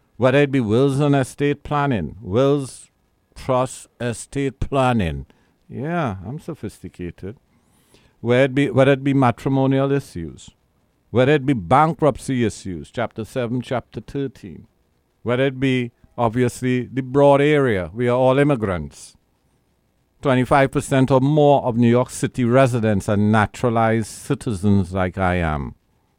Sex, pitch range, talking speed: male, 110-140 Hz, 120 wpm